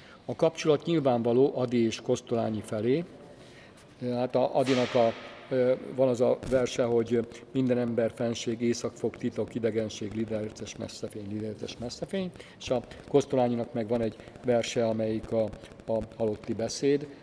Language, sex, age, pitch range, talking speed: Hungarian, male, 50-69, 115-130 Hz, 135 wpm